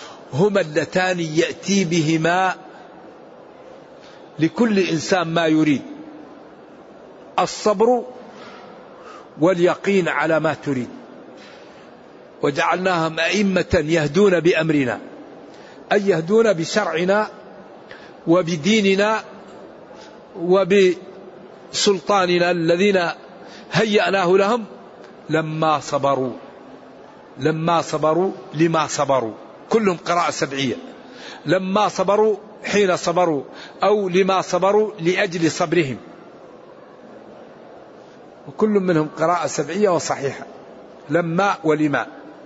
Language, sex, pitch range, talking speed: Arabic, male, 160-200 Hz, 75 wpm